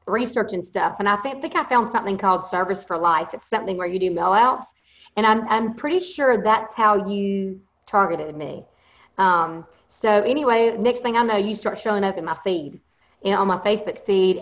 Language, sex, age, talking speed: English, female, 40-59, 210 wpm